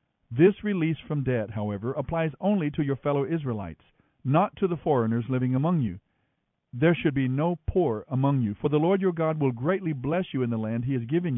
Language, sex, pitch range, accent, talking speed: English, male, 125-170 Hz, American, 210 wpm